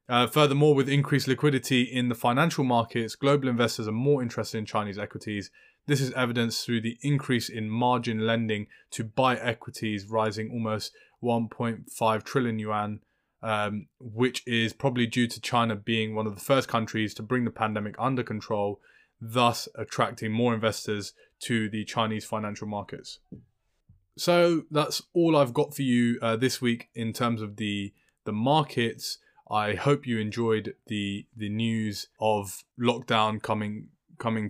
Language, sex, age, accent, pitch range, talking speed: English, male, 20-39, British, 105-125 Hz, 155 wpm